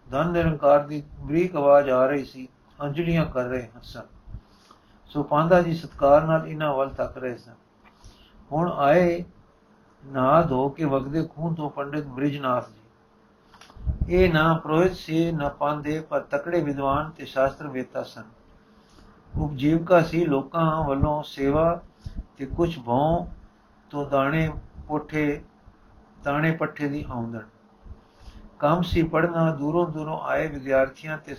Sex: male